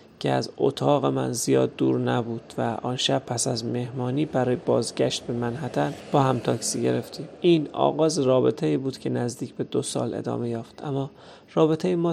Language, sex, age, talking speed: Persian, male, 30-49, 175 wpm